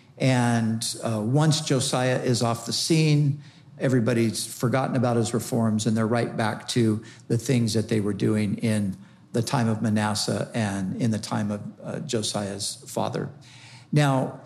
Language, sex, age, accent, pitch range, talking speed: English, male, 50-69, American, 115-145 Hz, 160 wpm